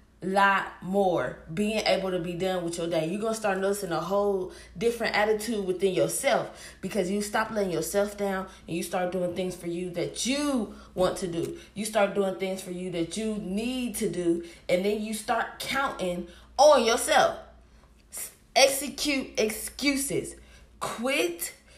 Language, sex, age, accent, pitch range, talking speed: English, female, 20-39, American, 180-230 Hz, 165 wpm